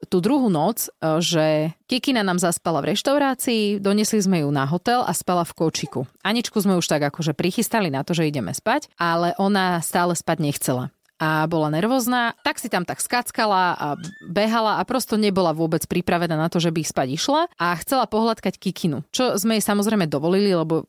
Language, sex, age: Slovak, female, 30-49